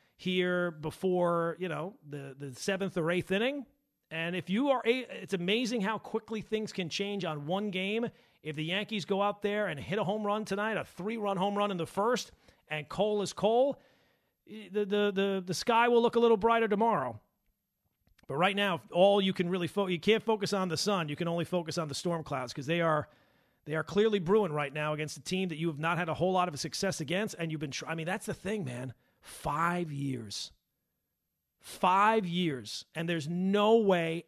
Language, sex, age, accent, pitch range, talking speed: English, male, 40-59, American, 155-200 Hz, 215 wpm